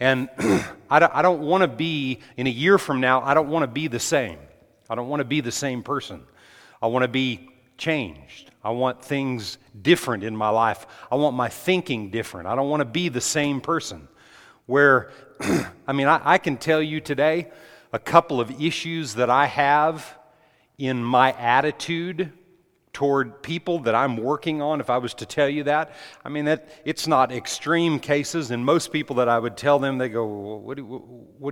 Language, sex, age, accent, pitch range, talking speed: English, male, 40-59, American, 125-155 Hz, 200 wpm